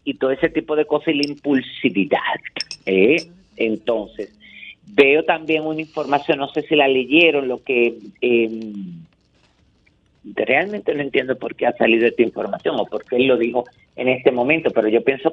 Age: 50-69